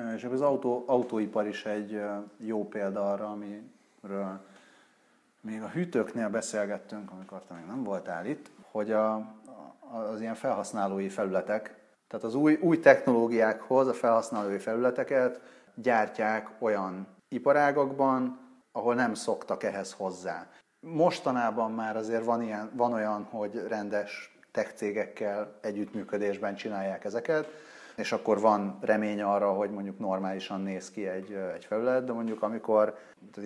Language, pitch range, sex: Hungarian, 100-120 Hz, male